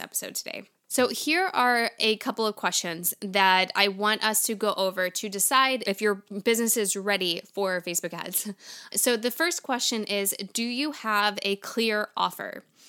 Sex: female